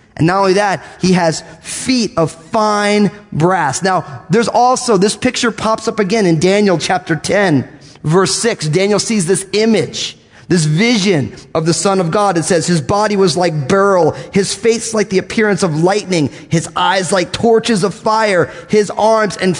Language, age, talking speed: English, 30-49, 180 wpm